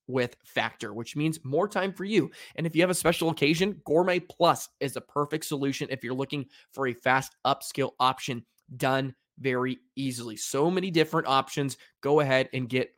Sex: male